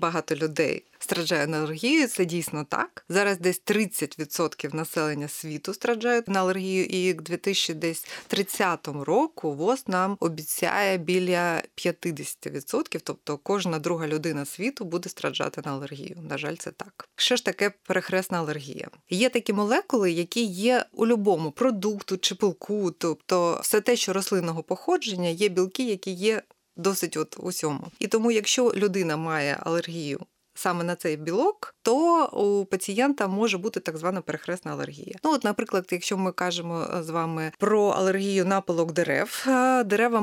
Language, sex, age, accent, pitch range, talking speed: Ukrainian, female, 30-49, native, 165-205 Hz, 150 wpm